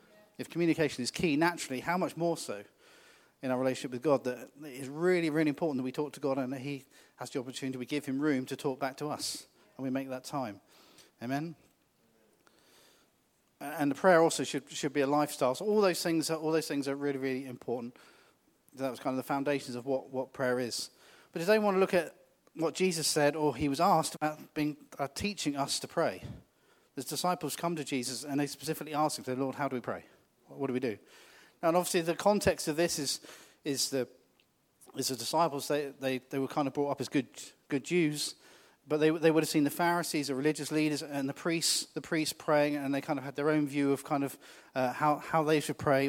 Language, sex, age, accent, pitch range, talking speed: English, male, 40-59, British, 135-160 Hz, 230 wpm